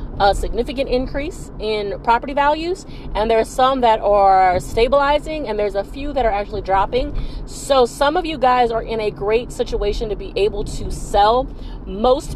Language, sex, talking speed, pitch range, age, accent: English, female, 175 wpm, 195-255 Hz, 30-49, American